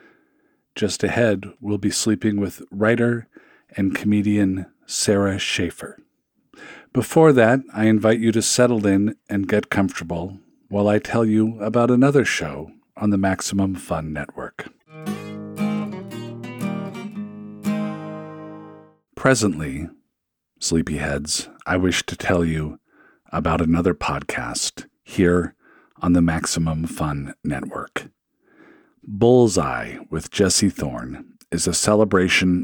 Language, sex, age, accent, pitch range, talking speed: English, male, 50-69, American, 85-115 Hz, 105 wpm